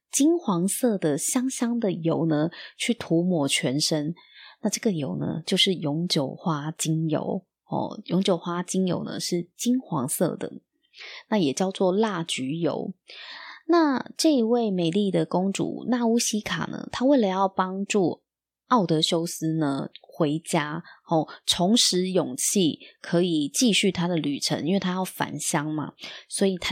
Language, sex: Chinese, female